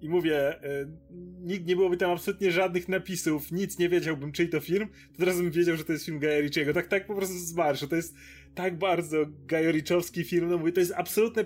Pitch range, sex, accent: 150-180 Hz, male, native